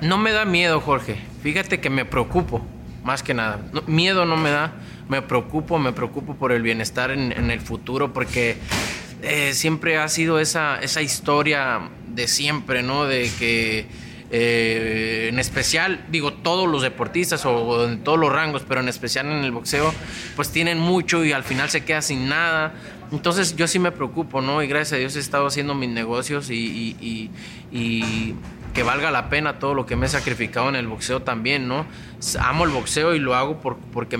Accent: Mexican